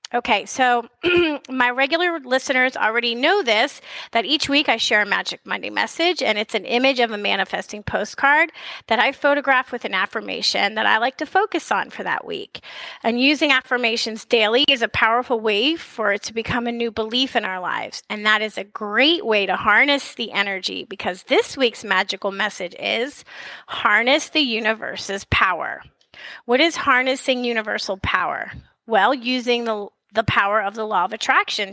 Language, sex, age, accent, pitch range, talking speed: English, female, 30-49, American, 215-265 Hz, 175 wpm